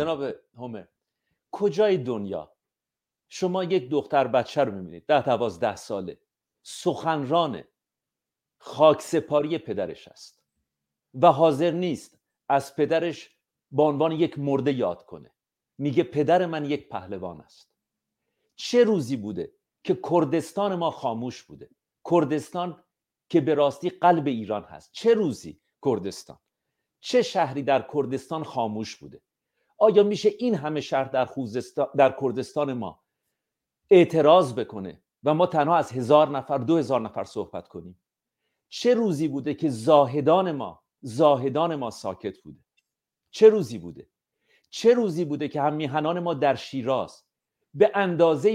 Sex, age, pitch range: male, 50-69, 135-175 Hz